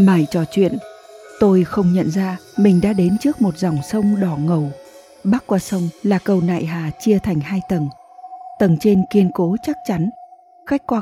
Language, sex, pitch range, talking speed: Vietnamese, female, 175-230 Hz, 190 wpm